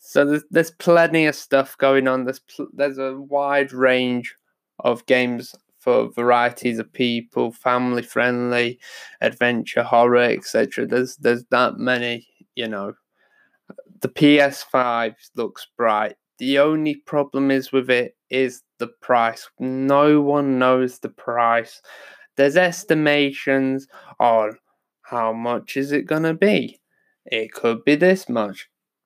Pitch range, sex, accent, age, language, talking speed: 120-145 Hz, male, British, 20-39, English, 130 wpm